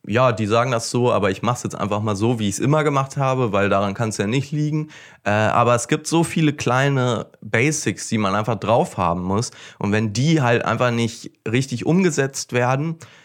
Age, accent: 30-49, German